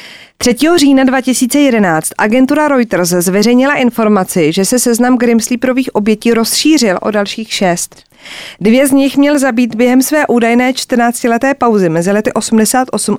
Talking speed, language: 130 wpm, Czech